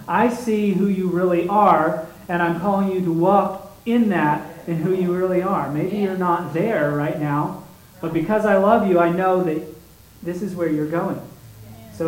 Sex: male